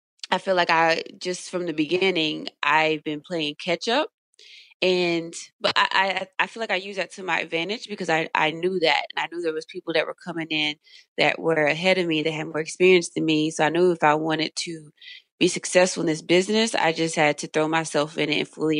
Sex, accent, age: female, American, 20-39